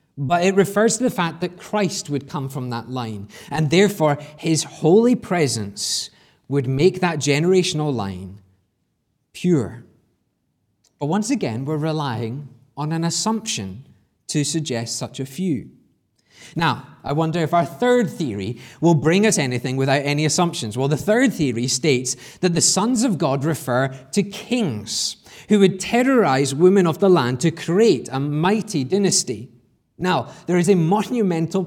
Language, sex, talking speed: English, male, 155 wpm